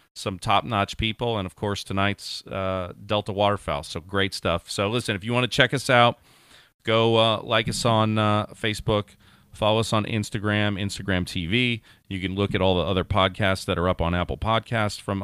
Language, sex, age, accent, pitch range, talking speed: English, male, 40-59, American, 85-105 Hz, 195 wpm